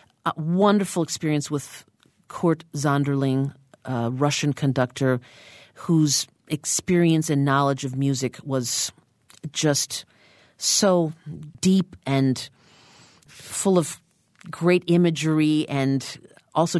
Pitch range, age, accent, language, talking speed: 135-165 Hz, 40-59, American, English, 95 wpm